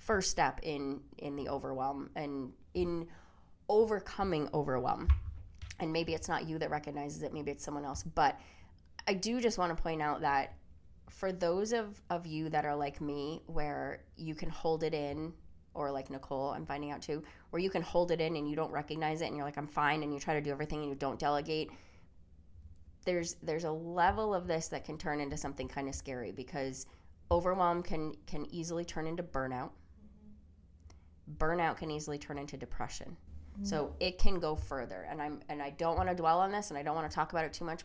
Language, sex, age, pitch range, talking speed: English, female, 20-39, 130-160 Hz, 210 wpm